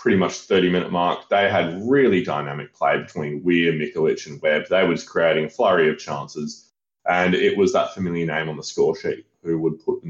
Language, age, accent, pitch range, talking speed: English, 20-39, Australian, 80-125 Hz, 210 wpm